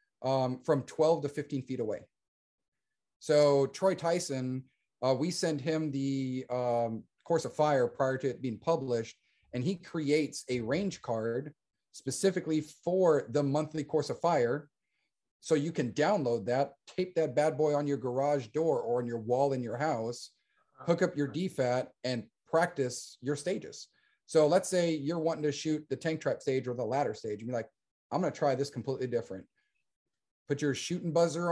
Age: 30-49